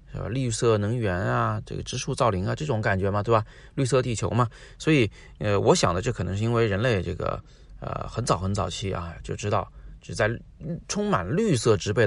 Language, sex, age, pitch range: Chinese, male, 30-49, 95-135 Hz